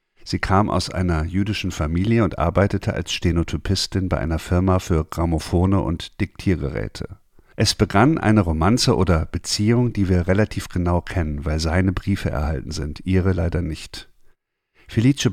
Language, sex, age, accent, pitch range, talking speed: German, male, 50-69, German, 85-105 Hz, 145 wpm